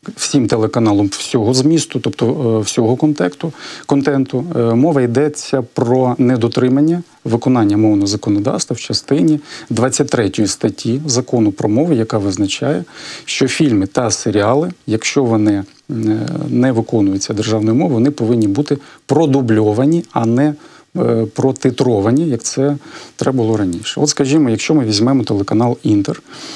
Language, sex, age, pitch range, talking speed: Ukrainian, male, 40-59, 110-140 Hz, 120 wpm